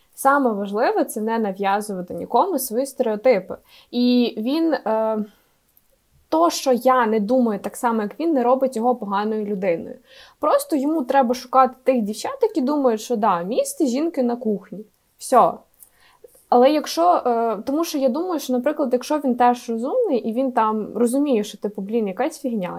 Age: 20-39